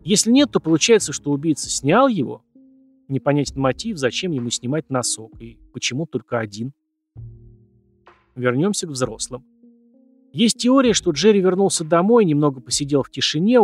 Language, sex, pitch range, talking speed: Russian, male, 120-185 Hz, 135 wpm